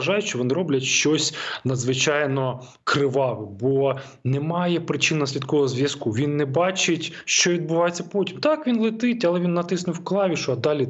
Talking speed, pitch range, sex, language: 155 wpm, 120-155 Hz, male, Ukrainian